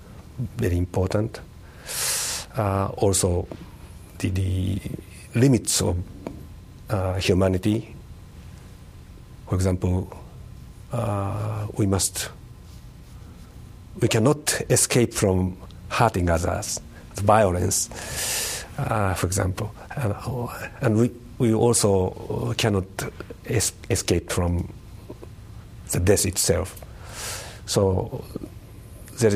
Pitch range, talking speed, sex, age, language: 95-110 Hz, 80 wpm, male, 50-69, English